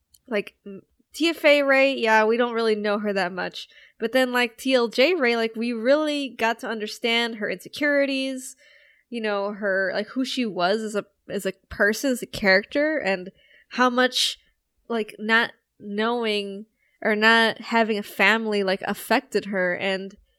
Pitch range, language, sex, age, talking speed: 205-260 Hz, English, female, 10-29, 160 wpm